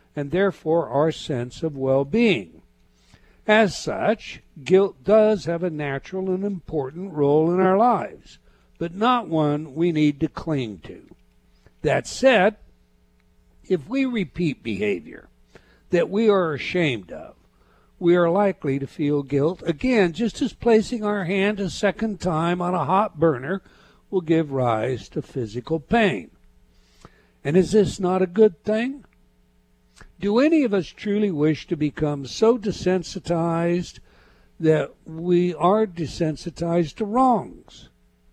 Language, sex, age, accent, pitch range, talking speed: English, male, 60-79, American, 140-195 Hz, 135 wpm